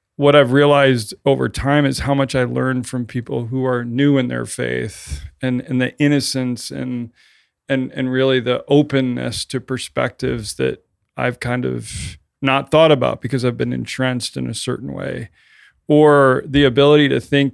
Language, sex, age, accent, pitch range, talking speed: English, male, 40-59, American, 120-135 Hz, 170 wpm